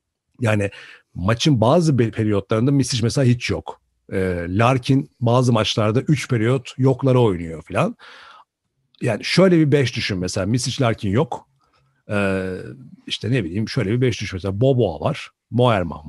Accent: native